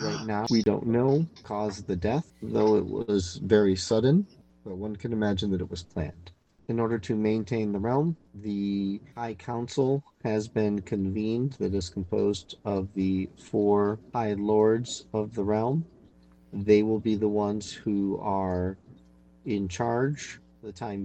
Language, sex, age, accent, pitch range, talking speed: English, male, 40-59, American, 90-110 Hz, 165 wpm